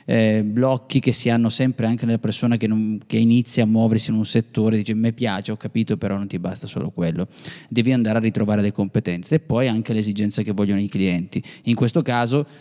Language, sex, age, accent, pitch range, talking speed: Italian, male, 20-39, native, 115-135 Hz, 225 wpm